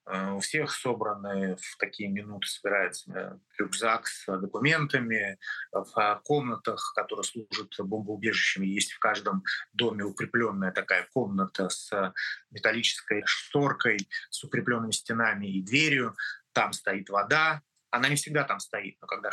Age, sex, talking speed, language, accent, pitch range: 30-49, male, 125 wpm, Russian, native, 105-145 Hz